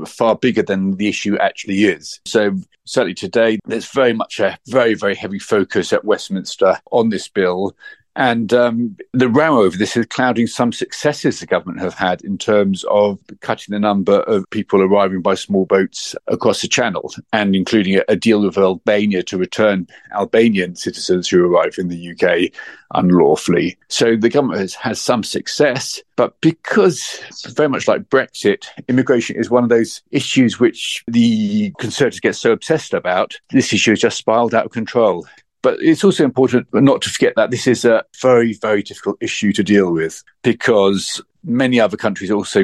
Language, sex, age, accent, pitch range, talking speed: English, male, 50-69, British, 100-125 Hz, 180 wpm